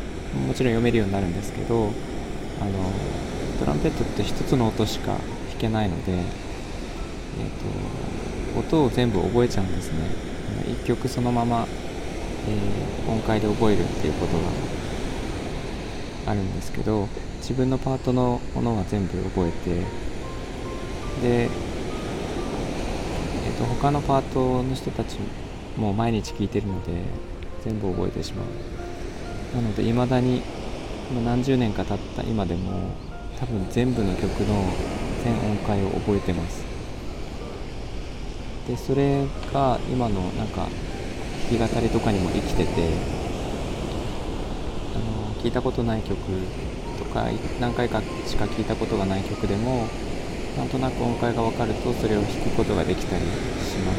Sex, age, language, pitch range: male, 20-39, Japanese, 95-120 Hz